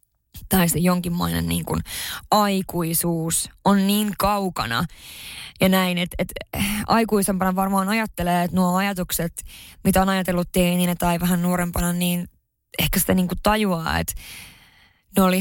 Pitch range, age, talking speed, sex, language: 170-195 Hz, 20-39, 130 wpm, female, Finnish